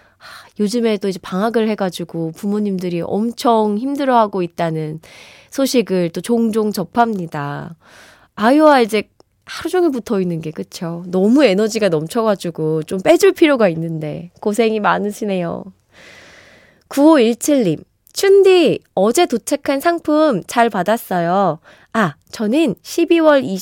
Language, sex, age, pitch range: Korean, female, 20-39, 180-270 Hz